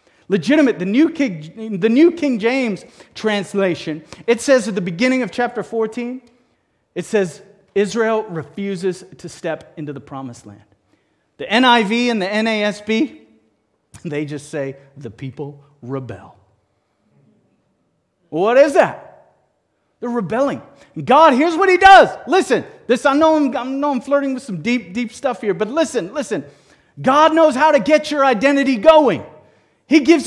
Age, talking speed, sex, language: 40-59, 150 wpm, male, English